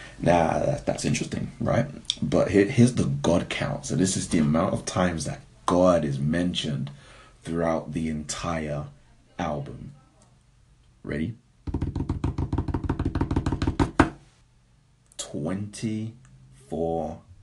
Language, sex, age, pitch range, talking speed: English, male, 30-49, 75-95 Hz, 95 wpm